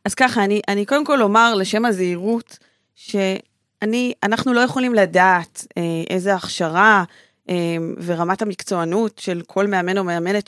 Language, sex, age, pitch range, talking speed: Hebrew, female, 20-39, 185-235 Hz, 130 wpm